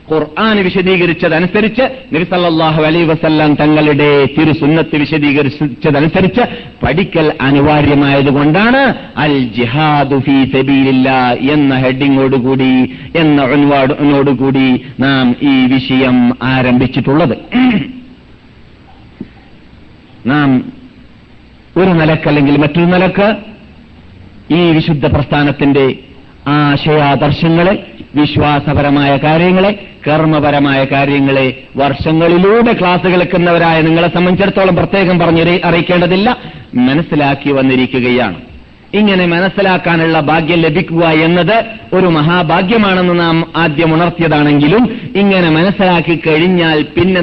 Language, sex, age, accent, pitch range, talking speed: Malayalam, male, 50-69, native, 145-185 Hz, 65 wpm